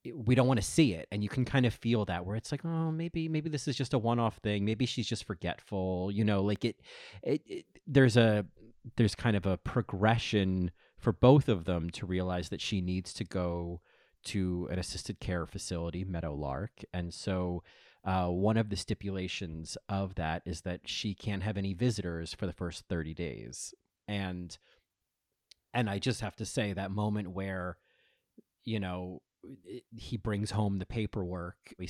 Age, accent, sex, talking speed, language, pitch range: 30-49, American, male, 185 wpm, English, 90-115 Hz